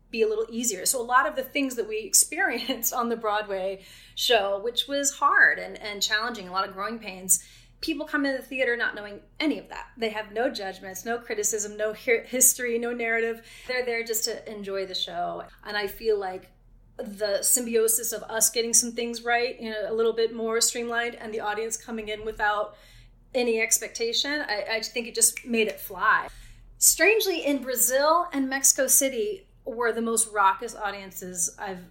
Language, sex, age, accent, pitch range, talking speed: English, female, 30-49, American, 215-265 Hz, 190 wpm